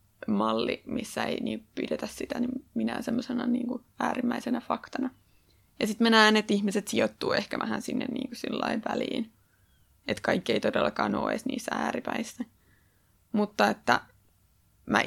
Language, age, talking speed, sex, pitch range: Finnish, 20-39, 135 wpm, female, 190-245 Hz